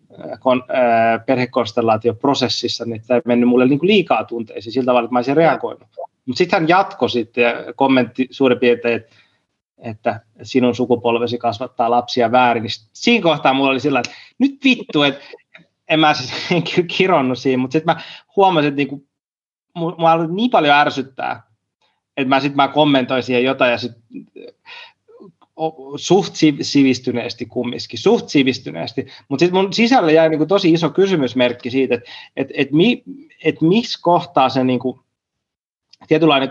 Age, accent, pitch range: 30-49, native, 120-155 Hz